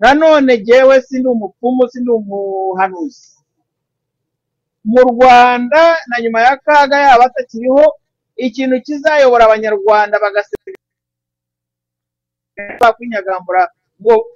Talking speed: 80 wpm